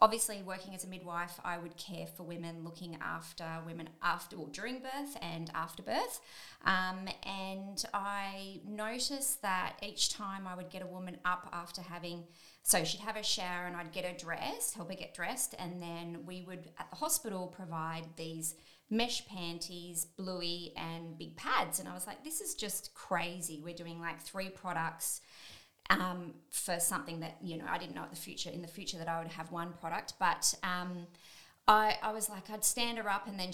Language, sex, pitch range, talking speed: English, female, 170-200 Hz, 195 wpm